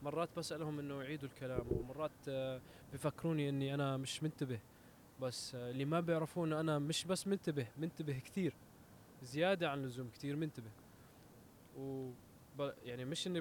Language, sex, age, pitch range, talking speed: English, male, 20-39, 125-160 Hz, 135 wpm